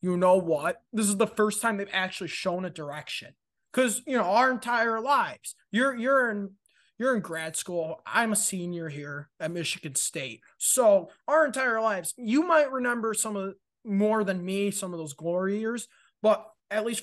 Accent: American